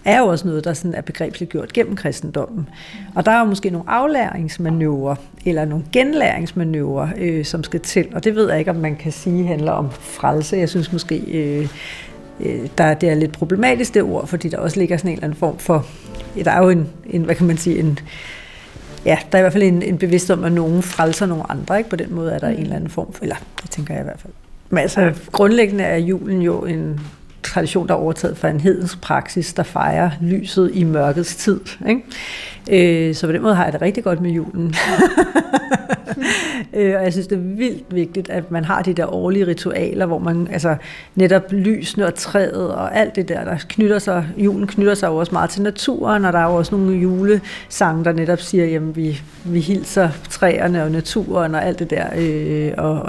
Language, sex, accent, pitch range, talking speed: Danish, female, native, 160-195 Hz, 215 wpm